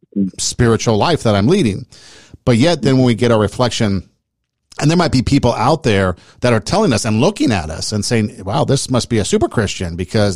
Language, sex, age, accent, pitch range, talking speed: English, male, 50-69, American, 100-125 Hz, 220 wpm